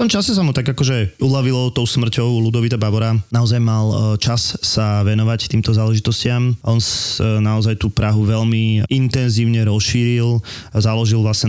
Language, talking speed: Slovak, 150 wpm